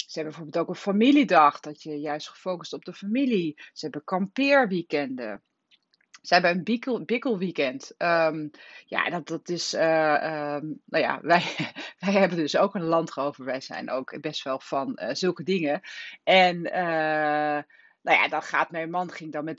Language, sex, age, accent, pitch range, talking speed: Dutch, female, 30-49, Dutch, 150-185 Hz, 170 wpm